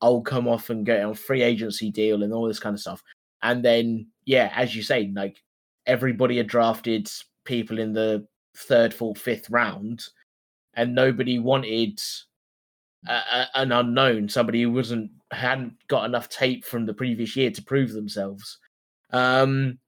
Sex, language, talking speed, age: male, English, 165 wpm, 20-39